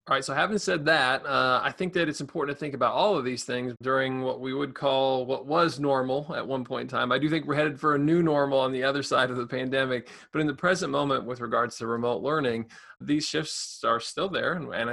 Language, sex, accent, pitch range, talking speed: English, male, American, 125-160 Hz, 255 wpm